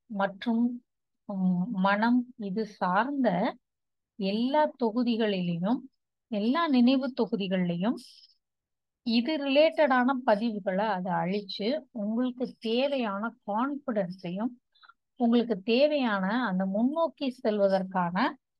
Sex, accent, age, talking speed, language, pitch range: female, native, 30-49, 70 wpm, Tamil, 195-255 Hz